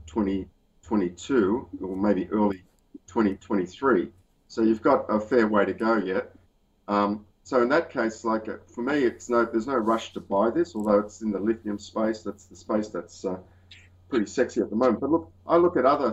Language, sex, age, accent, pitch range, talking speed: English, male, 50-69, Australian, 95-115 Hz, 195 wpm